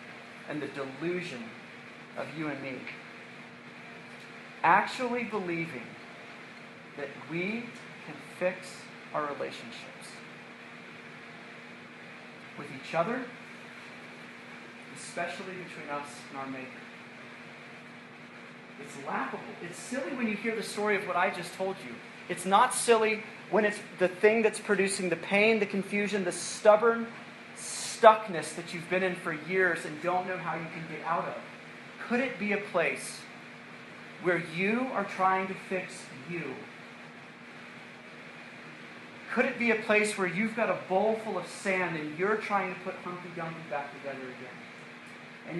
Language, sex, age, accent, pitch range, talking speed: English, male, 40-59, American, 165-215 Hz, 140 wpm